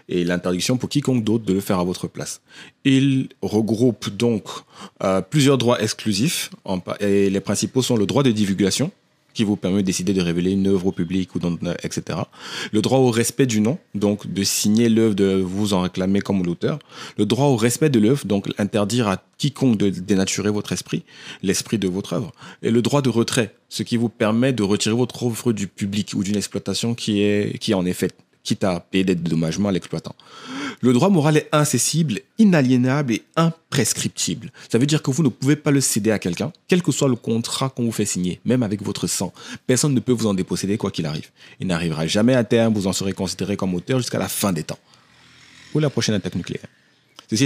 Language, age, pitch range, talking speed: French, 30-49, 100-140 Hz, 210 wpm